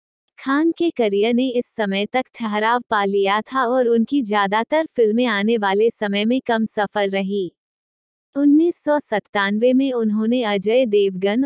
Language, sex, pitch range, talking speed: Hindi, female, 210-265 Hz, 140 wpm